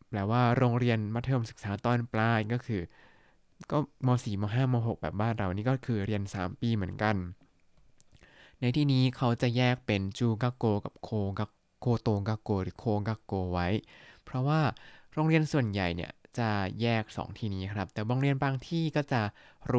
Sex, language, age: male, Thai, 20-39